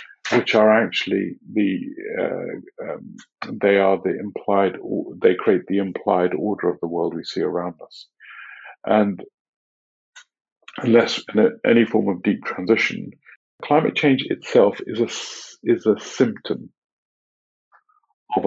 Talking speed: 125 wpm